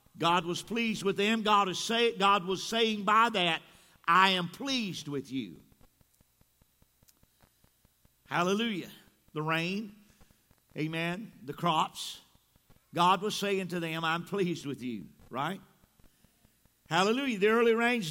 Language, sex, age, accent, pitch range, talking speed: English, male, 50-69, American, 185-245 Hz, 120 wpm